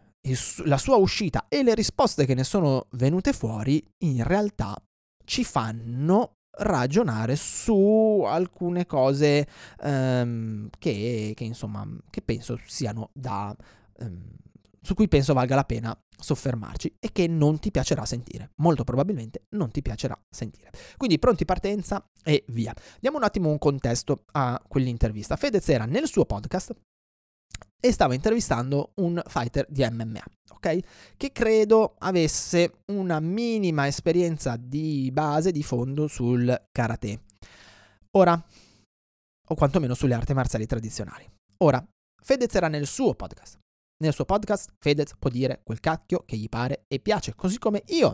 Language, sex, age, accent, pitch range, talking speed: Italian, male, 20-39, native, 125-180 Hz, 140 wpm